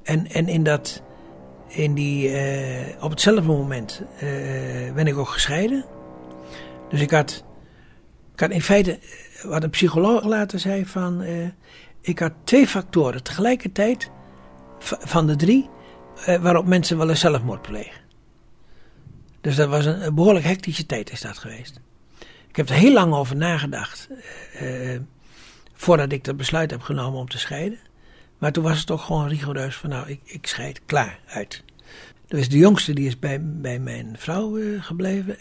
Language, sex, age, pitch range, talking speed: Dutch, male, 60-79, 130-170 Hz, 165 wpm